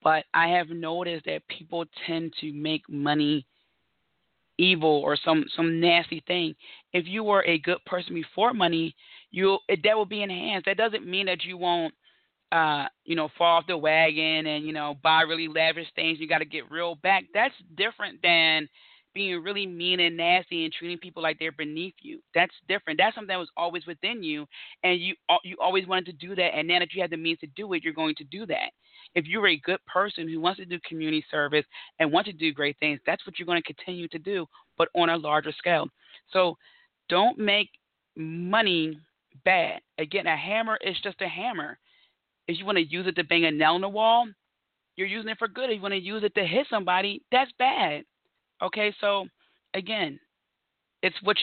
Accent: American